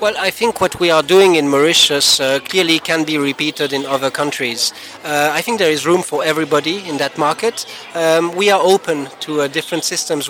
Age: 40-59